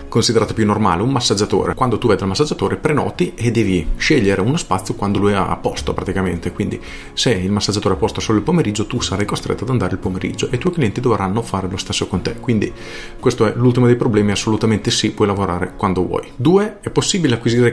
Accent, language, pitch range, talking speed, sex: native, Italian, 95-120 Hz, 215 wpm, male